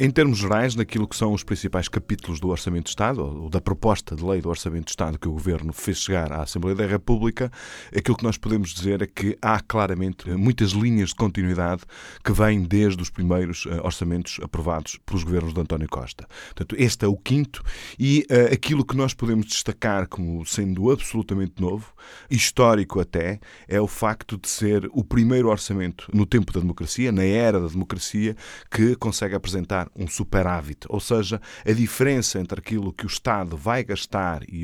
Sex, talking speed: male, 185 wpm